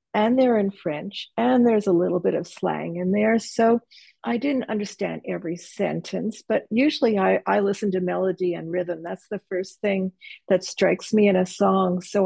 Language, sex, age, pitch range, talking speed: English, female, 50-69, 170-205 Hz, 190 wpm